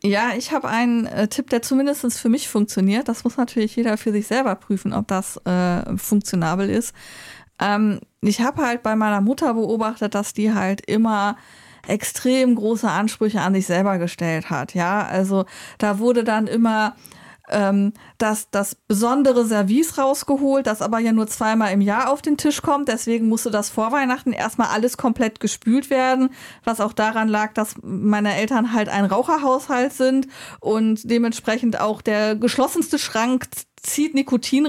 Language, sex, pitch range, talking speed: German, female, 220-260 Hz, 165 wpm